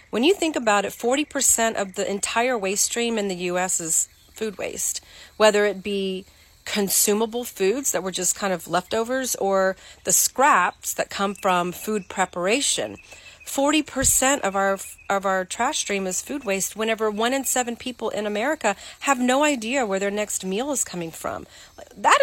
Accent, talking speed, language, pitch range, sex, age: American, 175 wpm, English, 185-250 Hz, female, 30-49